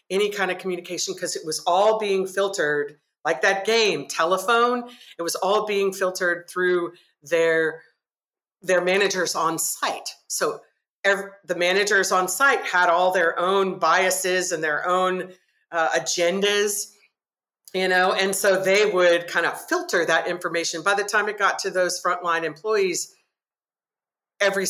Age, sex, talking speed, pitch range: 40-59, female, 150 wpm, 170-205 Hz